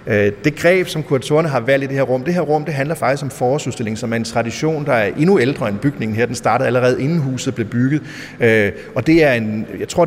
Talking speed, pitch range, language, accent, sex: 250 wpm, 115-155 Hz, Danish, native, male